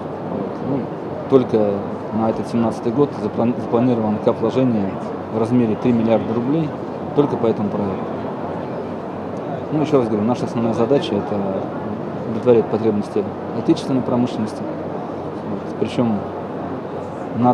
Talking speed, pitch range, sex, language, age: 105 wpm, 110-125 Hz, male, Russian, 20-39